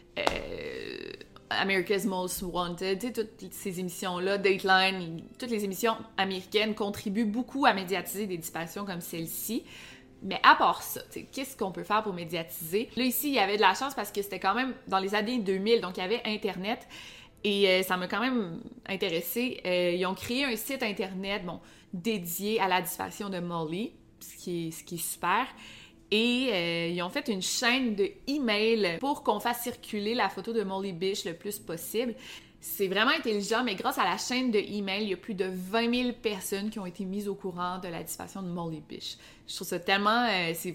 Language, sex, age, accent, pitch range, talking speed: French, female, 20-39, Canadian, 180-225 Hz, 200 wpm